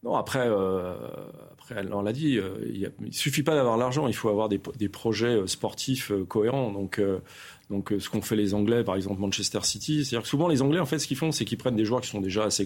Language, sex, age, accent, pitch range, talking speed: French, male, 30-49, French, 95-120 Hz, 265 wpm